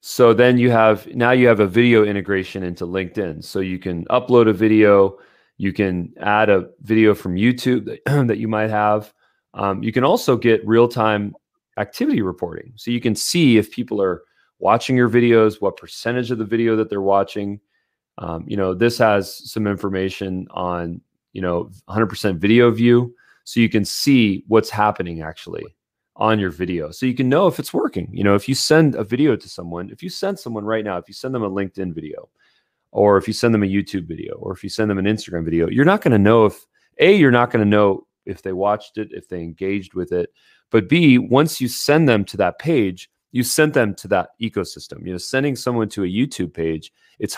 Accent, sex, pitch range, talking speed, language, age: American, male, 95-120 Hz, 215 wpm, English, 30-49